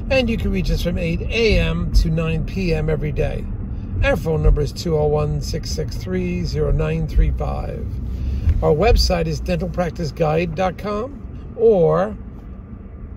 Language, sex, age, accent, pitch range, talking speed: English, male, 50-69, American, 105-180 Hz, 110 wpm